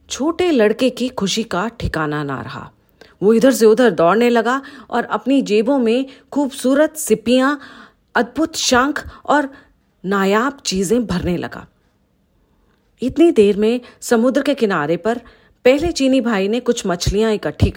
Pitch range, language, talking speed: 190-260 Hz, English, 140 wpm